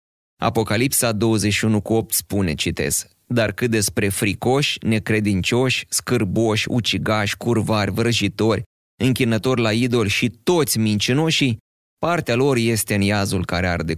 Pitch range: 100-130 Hz